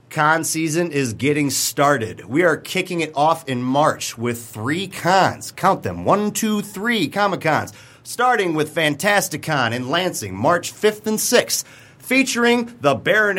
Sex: male